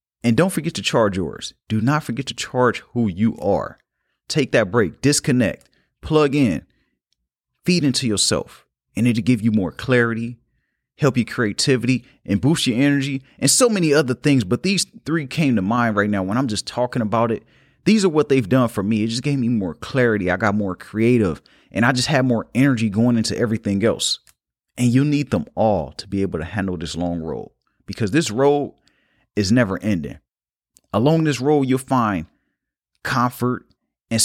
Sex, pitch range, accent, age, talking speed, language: male, 110-145 Hz, American, 30-49, 190 wpm, English